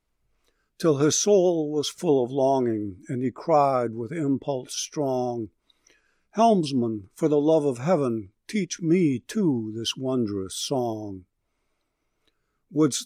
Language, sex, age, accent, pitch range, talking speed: English, male, 60-79, American, 120-155 Hz, 120 wpm